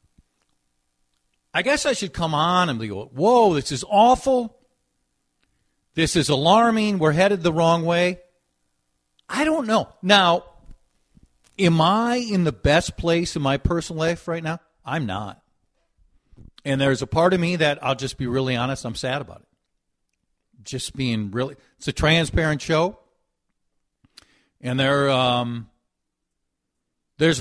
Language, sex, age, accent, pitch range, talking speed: English, male, 50-69, American, 120-175 Hz, 145 wpm